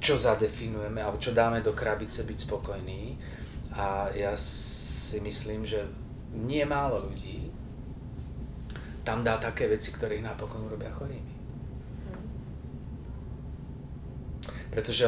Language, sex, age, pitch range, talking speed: Slovak, male, 30-49, 90-115 Hz, 105 wpm